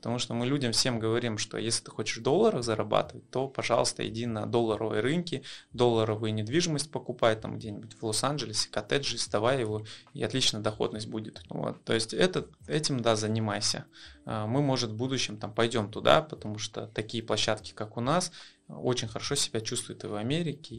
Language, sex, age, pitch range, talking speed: Russian, male, 20-39, 110-125 Hz, 175 wpm